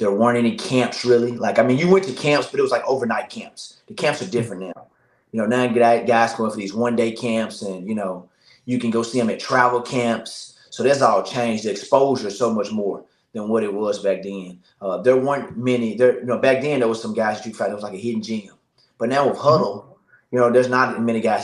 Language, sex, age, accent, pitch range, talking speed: English, male, 20-39, American, 105-125 Hz, 260 wpm